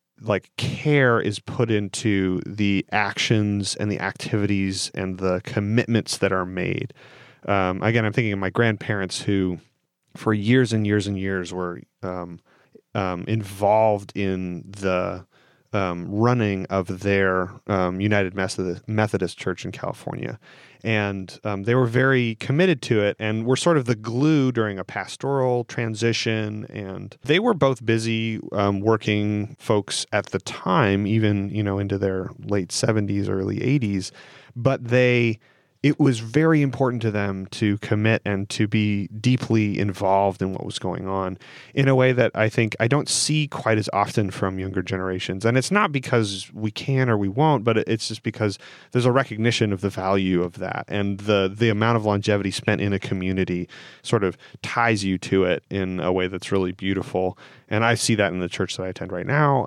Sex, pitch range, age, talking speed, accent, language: male, 95-120 Hz, 30-49, 175 wpm, American, English